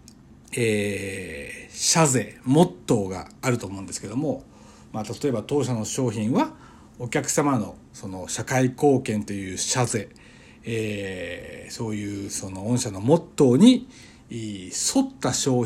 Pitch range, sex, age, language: 110-165 Hz, male, 60-79, Japanese